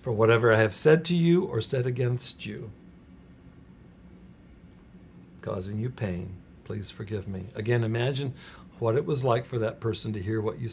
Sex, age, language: male, 60-79, English